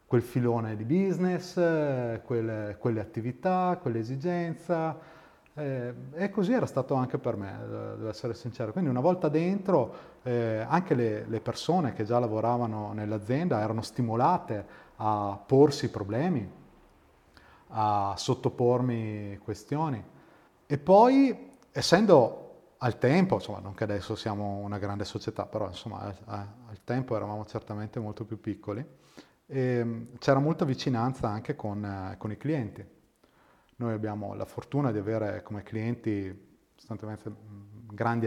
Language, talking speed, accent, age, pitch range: Italian, 125 wpm, native, 30-49, 105-130 Hz